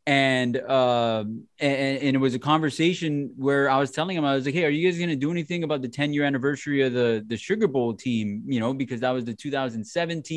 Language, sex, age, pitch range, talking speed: English, male, 20-39, 130-150 Hz, 245 wpm